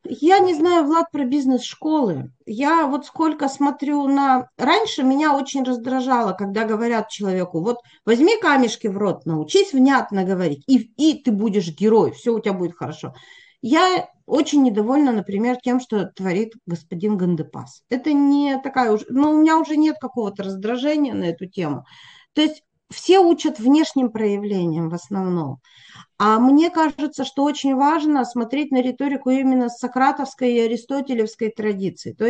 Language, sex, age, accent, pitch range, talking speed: Russian, female, 40-59, native, 210-285 Hz, 155 wpm